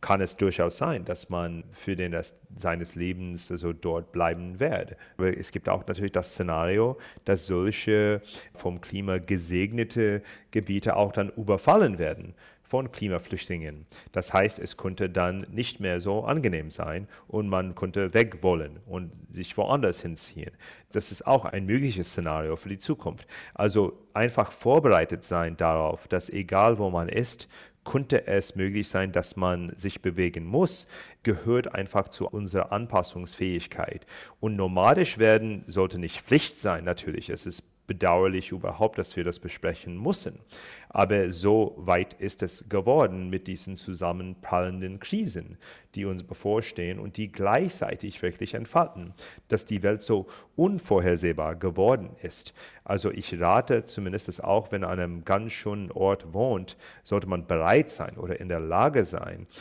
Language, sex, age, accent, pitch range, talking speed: German, male, 40-59, German, 90-105 Hz, 150 wpm